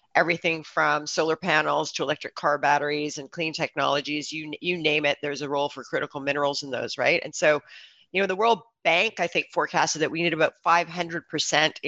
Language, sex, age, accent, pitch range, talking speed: English, female, 40-59, American, 150-175 Hz, 195 wpm